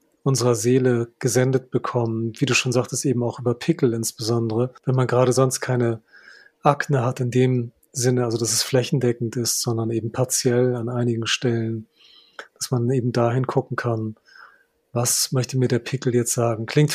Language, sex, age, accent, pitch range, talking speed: German, male, 40-59, German, 120-135 Hz, 170 wpm